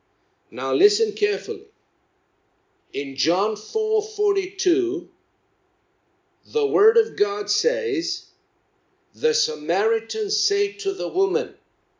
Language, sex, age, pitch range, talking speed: English, male, 60-79, 340-440 Hz, 85 wpm